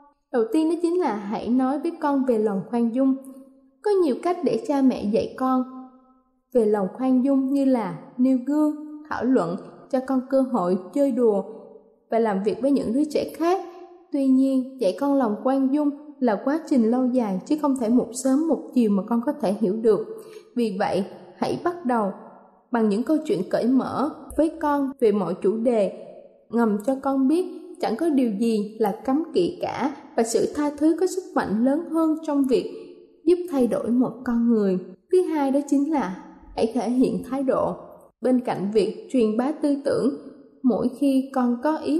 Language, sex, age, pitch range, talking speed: Vietnamese, female, 10-29, 235-290 Hz, 195 wpm